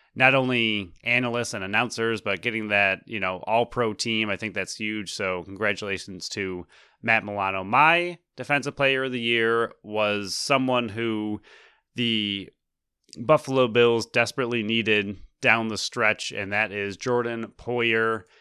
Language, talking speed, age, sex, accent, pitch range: English, 145 wpm, 30-49, male, American, 105-125 Hz